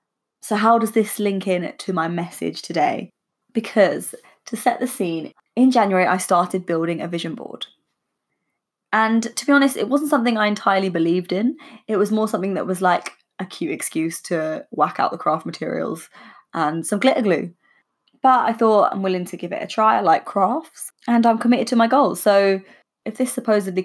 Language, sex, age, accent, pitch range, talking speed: English, female, 20-39, British, 180-230 Hz, 195 wpm